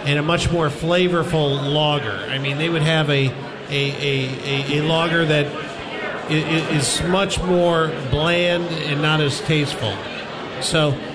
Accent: American